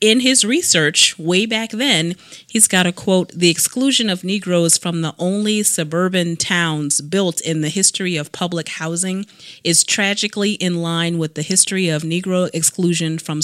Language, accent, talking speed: English, American, 165 wpm